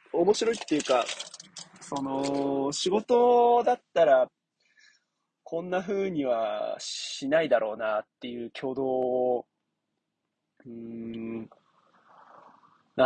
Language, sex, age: Japanese, male, 20-39